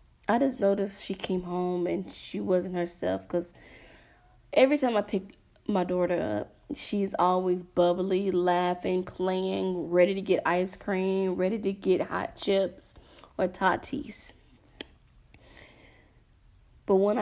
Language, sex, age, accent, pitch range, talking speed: English, female, 20-39, American, 125-195 Hz, 130 wpm